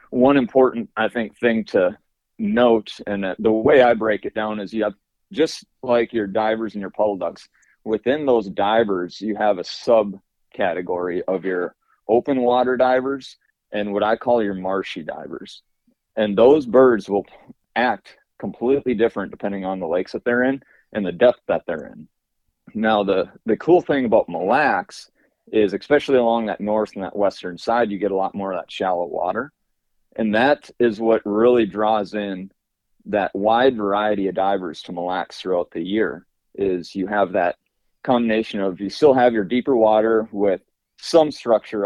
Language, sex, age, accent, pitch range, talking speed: English, male, 30-49, American, 100-115 Hz, 175 wpm